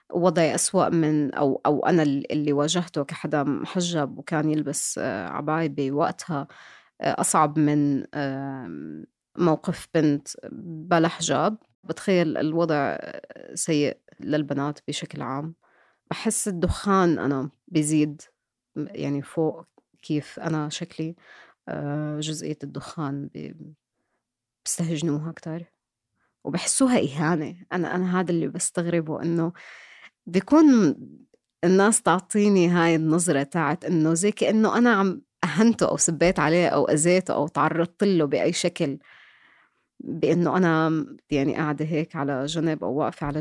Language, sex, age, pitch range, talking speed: Arabic, female, 20-39, 150-180 Hz, 110 wpm